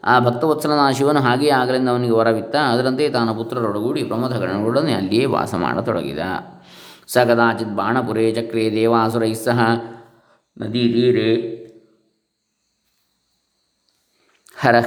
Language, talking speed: Kannada, 90 wpm